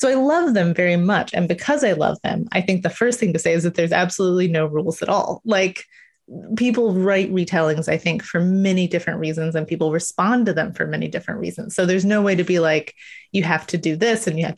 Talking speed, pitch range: 245 wpm, 170-215 Hz